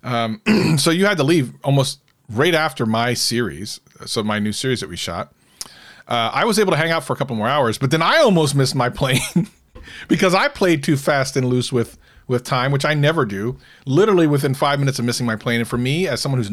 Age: 40-59